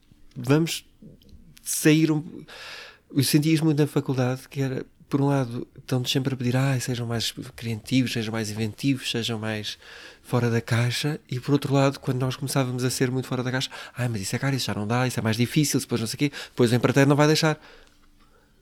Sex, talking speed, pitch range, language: male, 210 wpm, 125-160 Hz, Portuguese